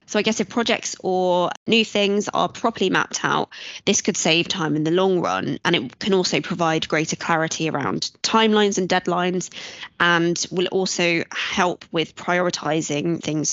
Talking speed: 170 wpm